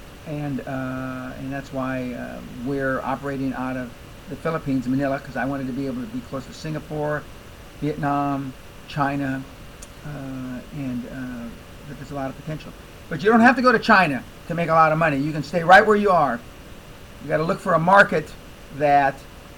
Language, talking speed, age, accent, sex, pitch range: English, 195 wpm, 50-69, American, male, 125-175 Hz